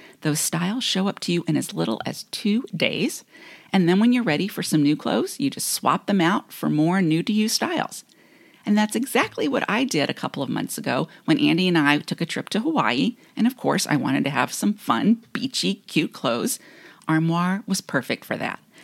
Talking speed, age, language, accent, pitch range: 215 wpm, 40-59, English, American, 160-240 Hz